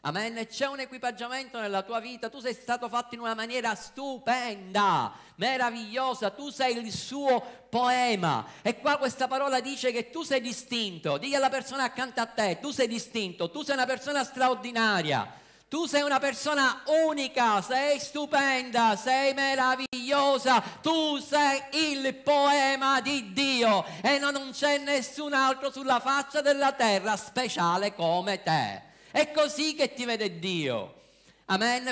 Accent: native